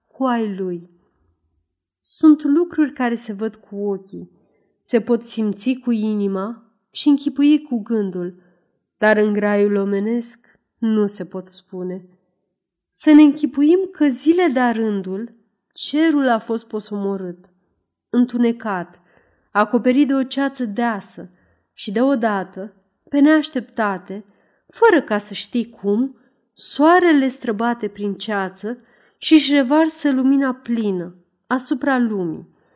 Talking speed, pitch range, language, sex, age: 115 wpm, 195-255 Hz, Romanian, female, 30-49